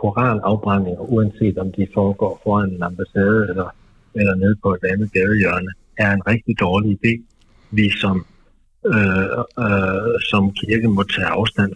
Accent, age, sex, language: native, 60-79, male, Danish